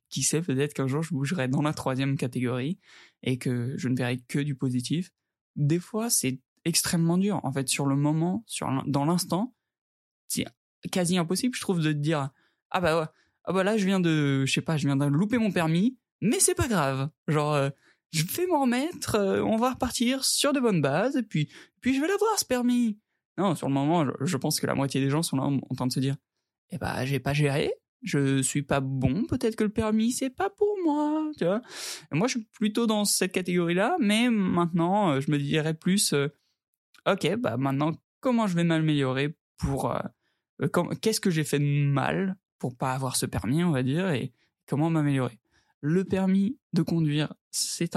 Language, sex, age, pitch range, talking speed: French, male, 20-39, 140-205 Hz, 215 wpm